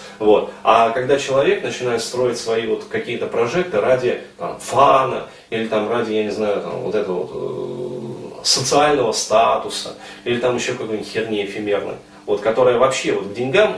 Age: 30-49